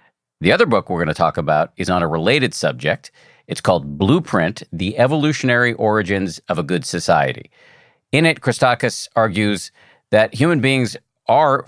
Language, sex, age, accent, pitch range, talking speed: English, male, 50-69, American, 90-120 Hz, 155 wpm